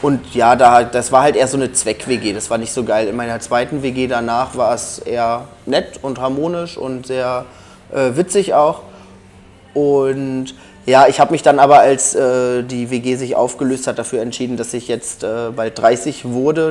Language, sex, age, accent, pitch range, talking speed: German, male, 20-39, German, 125-140 Hz, 190 wpm